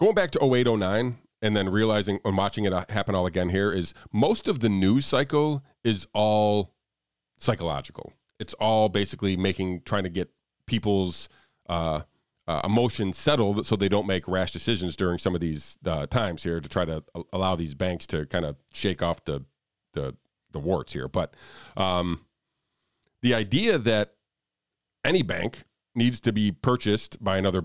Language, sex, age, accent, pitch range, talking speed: English, male, 40-59, American, 95-115 Hz, 165 wpm